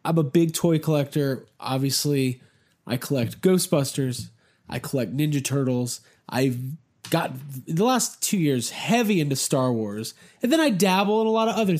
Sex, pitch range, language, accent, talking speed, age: male, 135-190 Hz, English, American, 170 wpm, 20-39